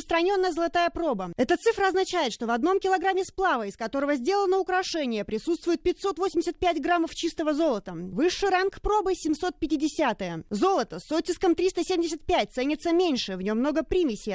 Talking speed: 140 wpm